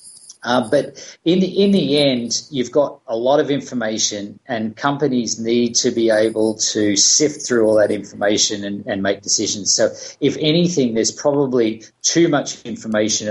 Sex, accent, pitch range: male, Australian, 105-130 Hz